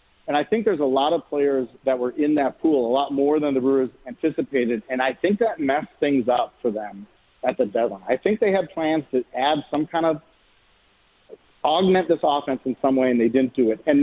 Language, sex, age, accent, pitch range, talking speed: English, male, 40-59, American, 125-165 Hz, 230 wpm